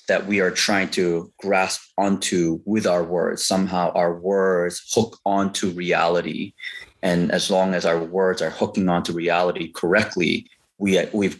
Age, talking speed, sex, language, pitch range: 30-49, 145 wpm, male, English, 90-115 Hz